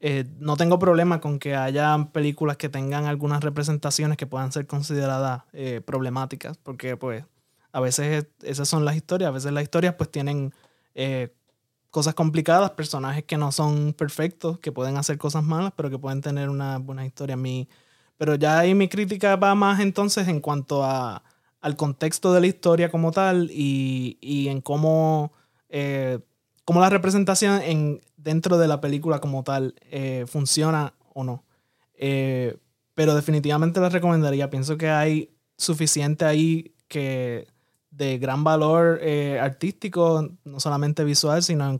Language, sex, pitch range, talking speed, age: English, male, 135-160 Hz, 160 wpm, 20-39